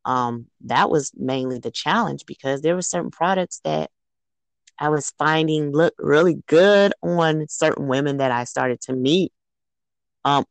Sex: female